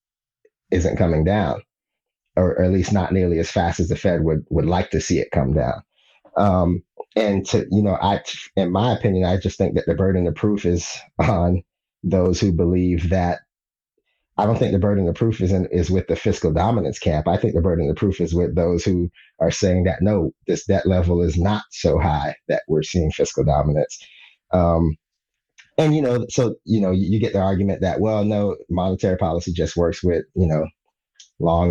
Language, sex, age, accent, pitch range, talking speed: English, male, 30-49, American, 85-100 Hz, 200 wpm